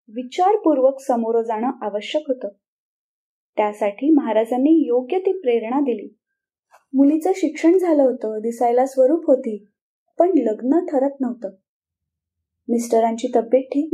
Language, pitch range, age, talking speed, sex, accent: Marathi, 230-305 Hz, 20-39, 90 wpm, female, native